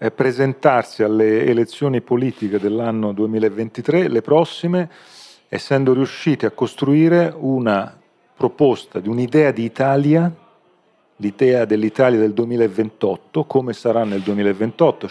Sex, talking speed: male, 105 wpm